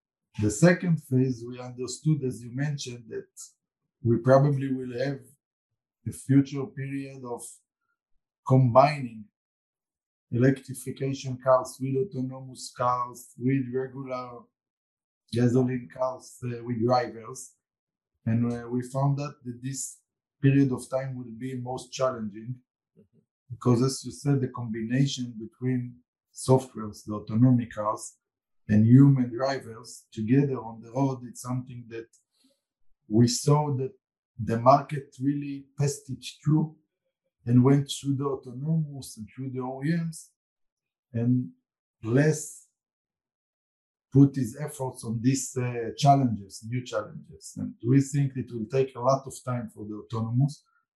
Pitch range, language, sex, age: 120-135 Hz, English, male, 50-69